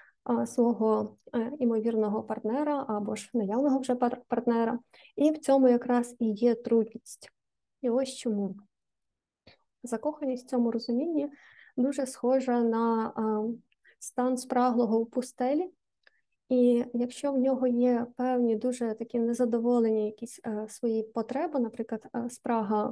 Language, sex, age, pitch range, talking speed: Ukrainian, female, 20-39, 225-260 Hz, 115 wpm